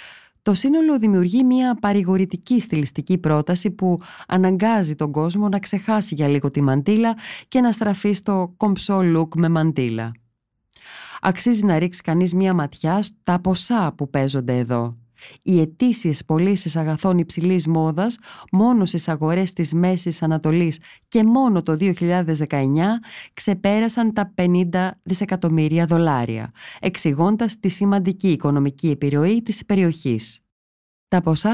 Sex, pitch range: female, 155-200 Hz